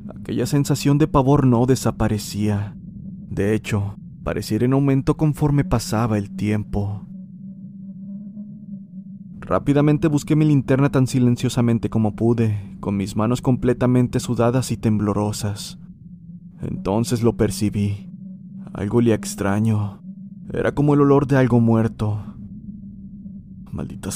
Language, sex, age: Spanish, male, 30-49